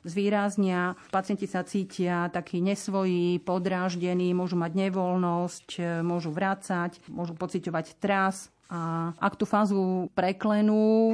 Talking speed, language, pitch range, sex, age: 110 wpm, Slovak, 175-195 Hz, female, 40-59